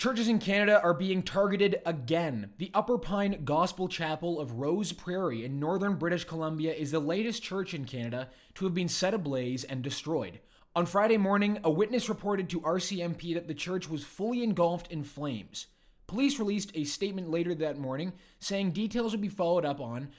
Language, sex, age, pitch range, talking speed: English, male, 20-39, 145-195 Hz, 185 wpm